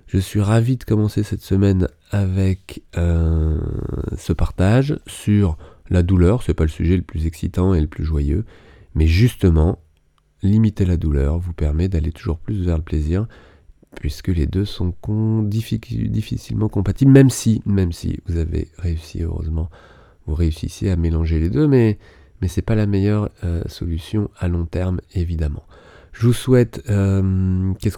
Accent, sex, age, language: French, male, 30-49, French